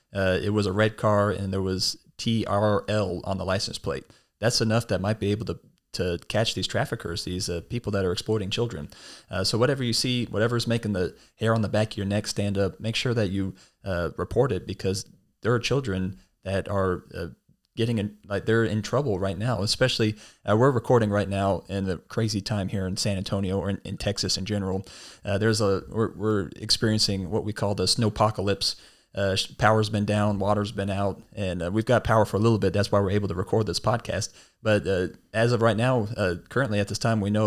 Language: English